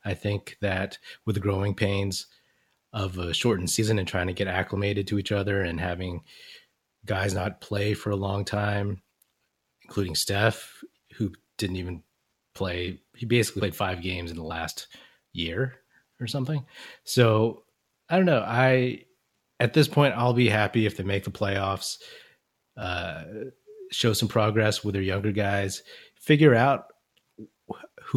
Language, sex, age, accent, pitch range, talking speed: English, male, 30-49, American, 95-115 Hz, 155 wpm